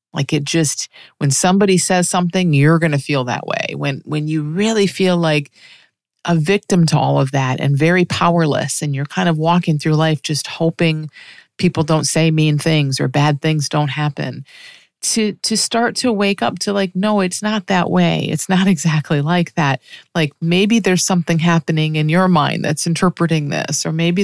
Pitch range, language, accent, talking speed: 155-195 Hz, English, American, 195 wpm